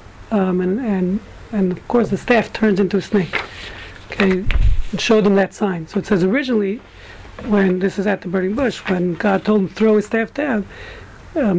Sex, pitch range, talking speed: male, 185-220 Hz, 200 wpm